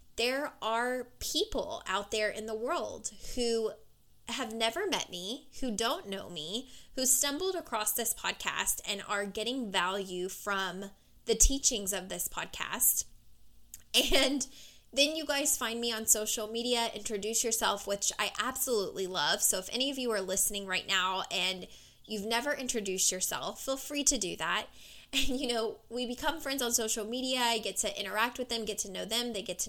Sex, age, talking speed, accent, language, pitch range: female, 10-29, 175 wpm, American, English, 200-255 Hz